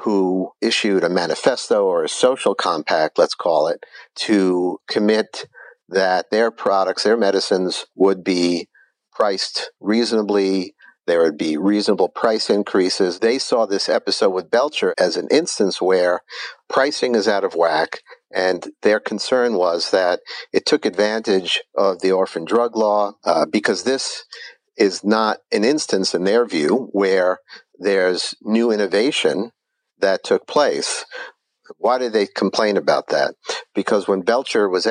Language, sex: English, male